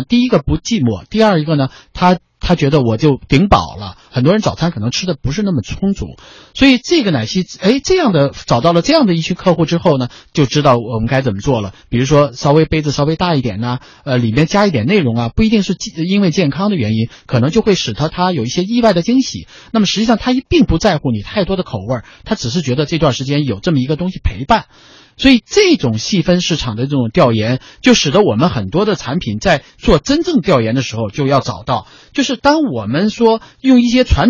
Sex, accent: male, native